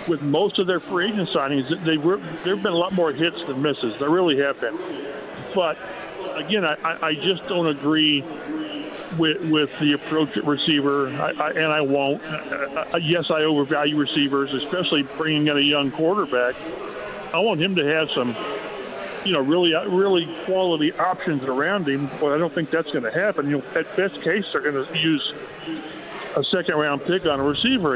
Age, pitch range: 50-69, 145-190 Hz